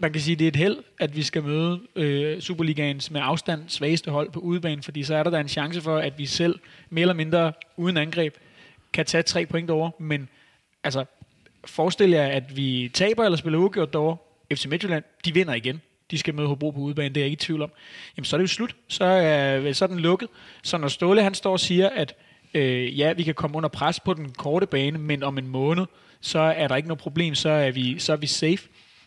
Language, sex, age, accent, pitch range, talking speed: Danish, male, 30-49, native, 150-180 Hz, 245 wpm